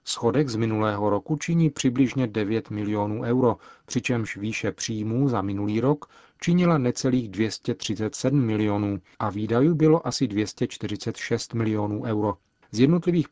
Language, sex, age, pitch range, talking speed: Czech, male, 40-59, 105-130 Hz, 125 wpm